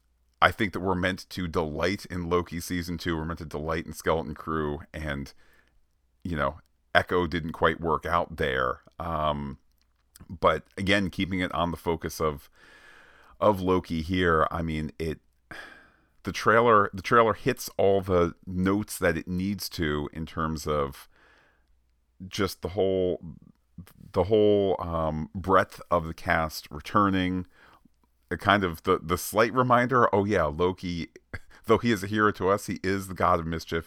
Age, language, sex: 40-59, English, male